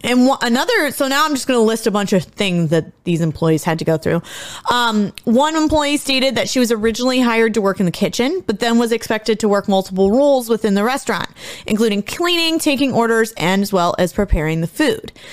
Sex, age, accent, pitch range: female, 30-49, American, 205-265 Hz